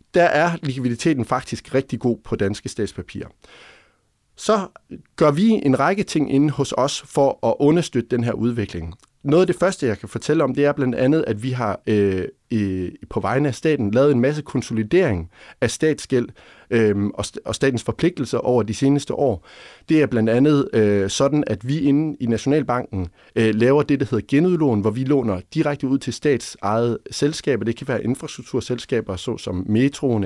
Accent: native